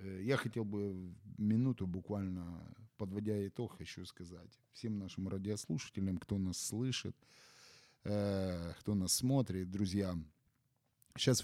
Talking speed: 105 wpm